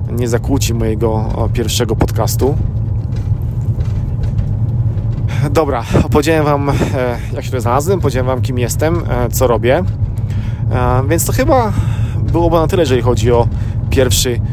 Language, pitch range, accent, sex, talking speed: Polish, 110-130 Hz, native, male, 110 wpm